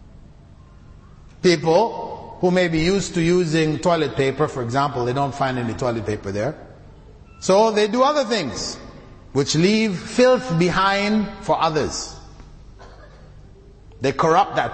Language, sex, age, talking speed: English, male, 30-49, 130 wpm